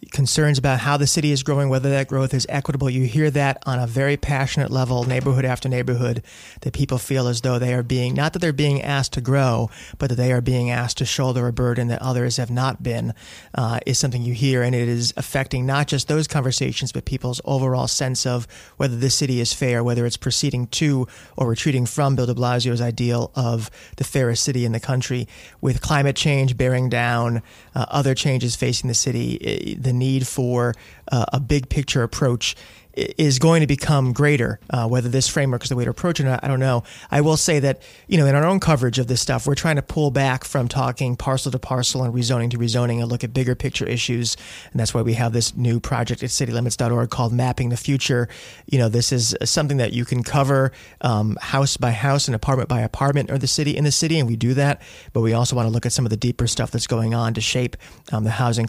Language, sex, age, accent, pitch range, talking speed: English, male, 30-49, American, 120-140 Hz, 235 wpm